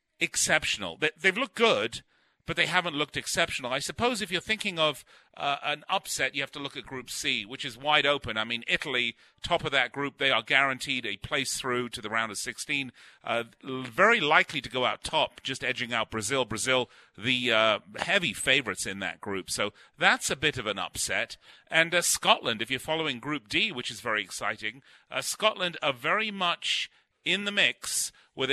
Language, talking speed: English, 200 wpm